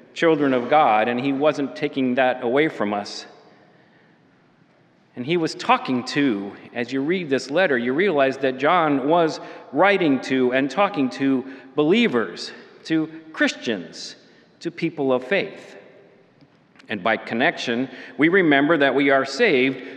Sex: male